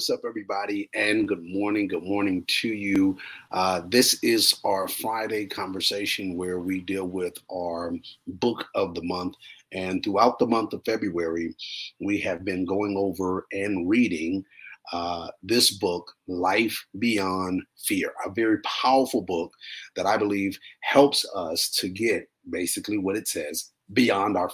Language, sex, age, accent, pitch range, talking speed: English, male, 40-59, American, 95-120 Hz, 150 wpm